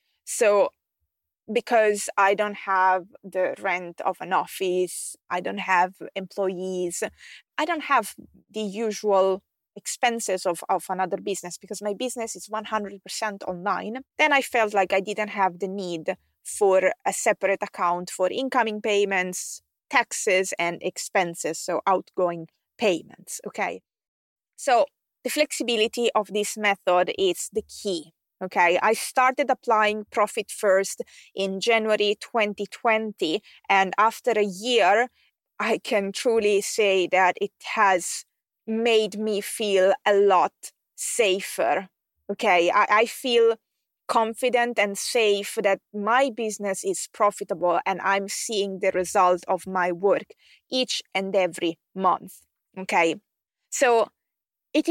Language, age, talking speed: English, 20-39, 125 wpm